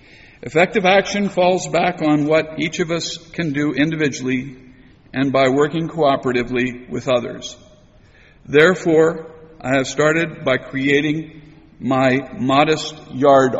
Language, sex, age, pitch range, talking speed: English, male, 60-79, 135-165 Hz, 120 wpm